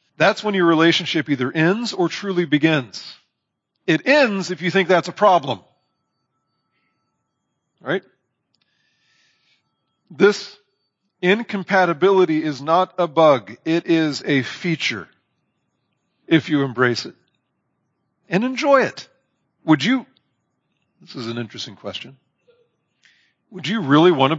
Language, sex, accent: English, male, American